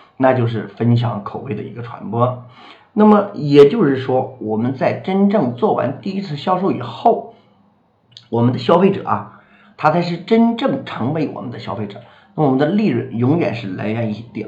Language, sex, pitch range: Chinese, male, 115-155 Hz